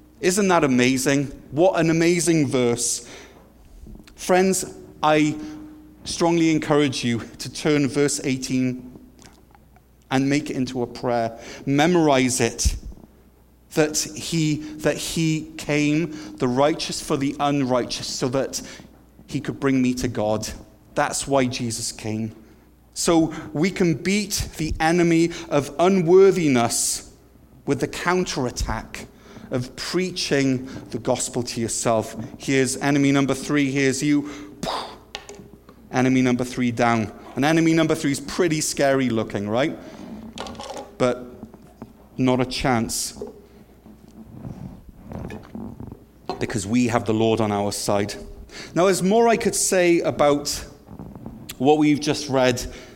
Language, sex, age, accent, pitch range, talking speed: English, male, 30-49, British, 120-155 Hz, 120 wpm